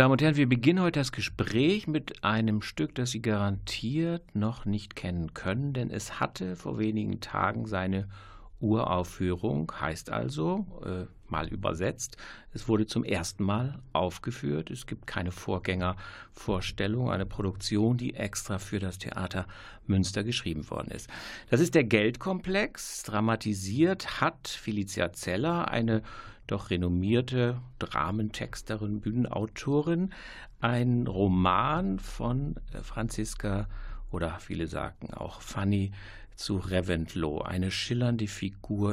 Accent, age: German, 60-79